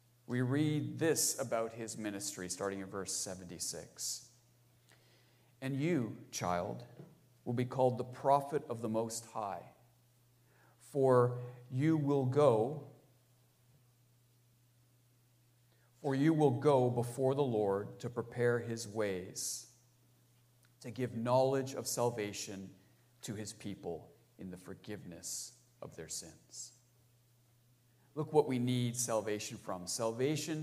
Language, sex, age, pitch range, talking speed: English, male, 40-59, 115-130 Hz, 115 wpm